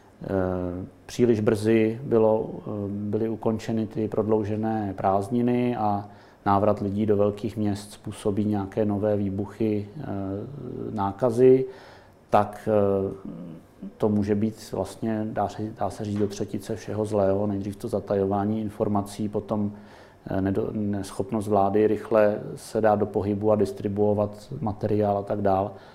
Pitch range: 100-110 Hz